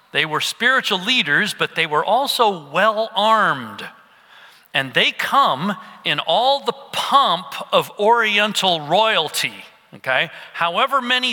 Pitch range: 150-225 Hz